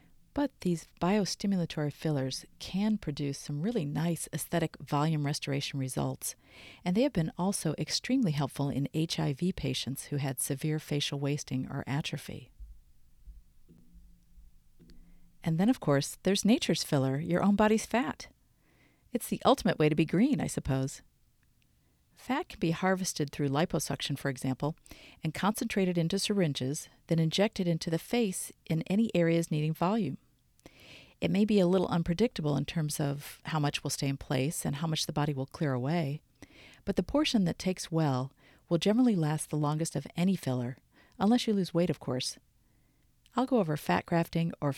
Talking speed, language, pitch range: 160 wpm, English, 140-205 Hz